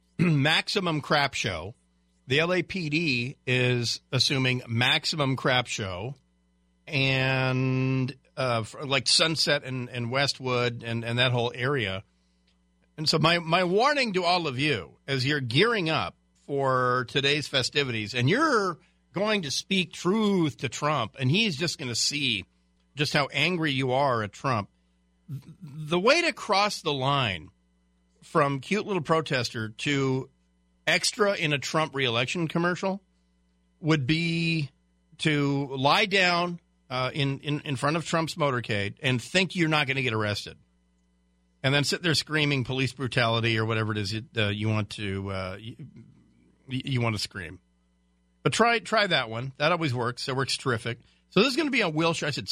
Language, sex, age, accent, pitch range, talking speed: English, male, 50-69, American, 110-155 Hz, 160 wpm